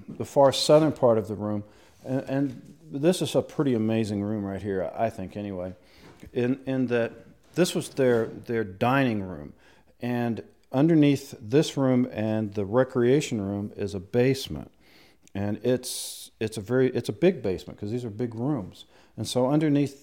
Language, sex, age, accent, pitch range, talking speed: English, male, 50-69, American, 100-130 Hz, 170 wpm